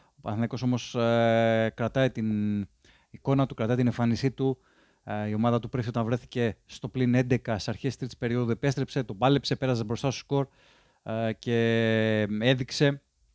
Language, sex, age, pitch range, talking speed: Greek, male, 20-39, 110-130 Hz, 165 wpm